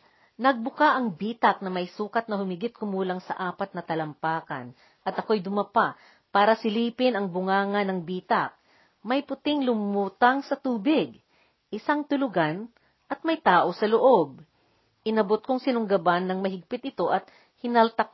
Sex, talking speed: female, 140 wpm